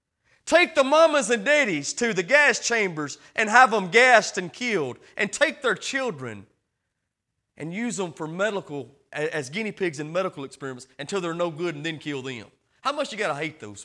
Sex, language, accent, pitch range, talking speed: male, English, American, 140-230 Hz, 195 wpm